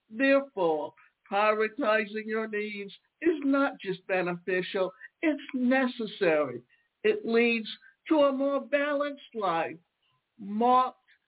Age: 60-79